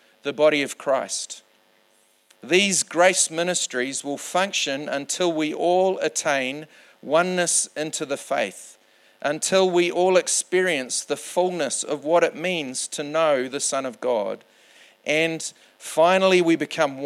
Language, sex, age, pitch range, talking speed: English, male, 40-59, 110-165 Hz, 130 wpm